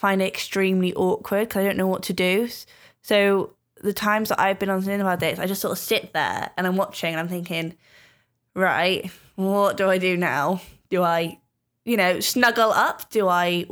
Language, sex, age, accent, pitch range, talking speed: English, female, 10-29, British, 195-240 Hz, 200 wpm